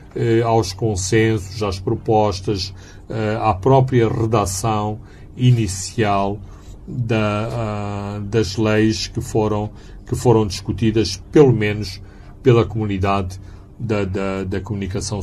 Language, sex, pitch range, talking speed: Portuguese, male, 100-120 Hz, 85 wpm